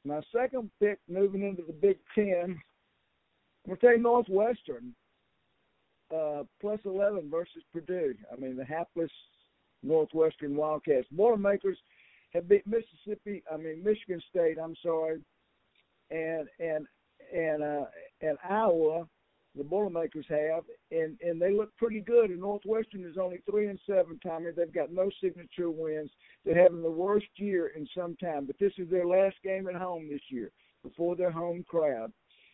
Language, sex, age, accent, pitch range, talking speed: English, male, 60-79, American, 165-200 Hz, 155 wpm